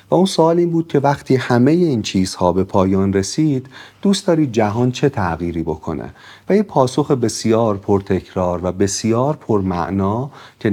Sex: male